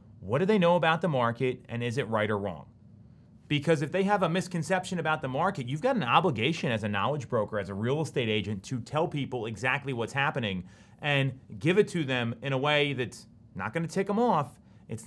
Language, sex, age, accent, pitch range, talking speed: English, male, 30-49, American, 120-170 Hz, 225 wpm